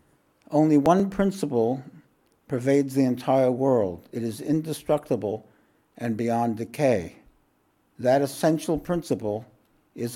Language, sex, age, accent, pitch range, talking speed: English, male, 60-79, American, 115-140 Hz, 100 wpm